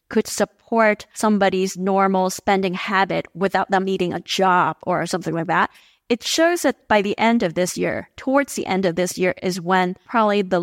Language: English